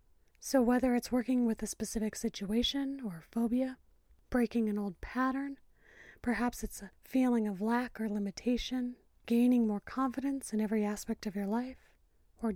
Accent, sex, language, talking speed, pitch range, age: American, female, English, 155 wpm, 175-235 Hz, 30-49